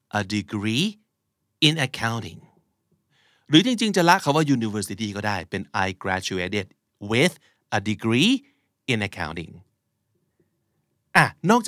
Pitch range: 105-155 Hz